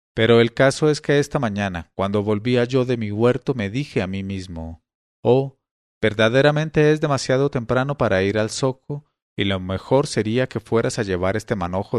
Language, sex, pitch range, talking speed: English, male, 100-140 Hz, 185 wpm